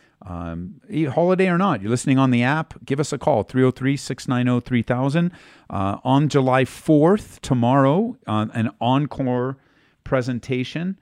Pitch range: 95-125 Hz